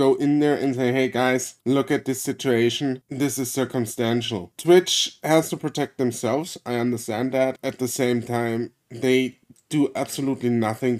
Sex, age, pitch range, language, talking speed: male, 20-39, 120-150 Hz, English, 160 wpm